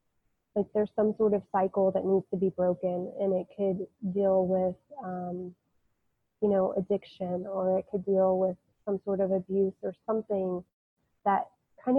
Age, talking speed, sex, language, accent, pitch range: 20-39, 165 wpm, female, English, American, 185-205 Hz